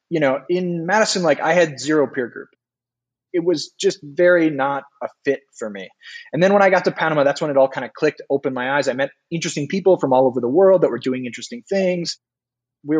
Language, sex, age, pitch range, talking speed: English, male, 20-39, 130-190 Hz, 235 wpm